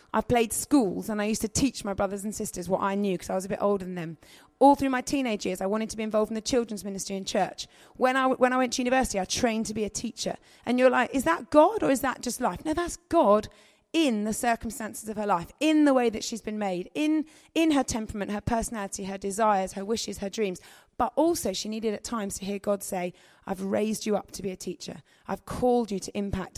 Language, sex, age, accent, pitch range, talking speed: English, female, 30-49, British, 200-250 Hz, 255 wpm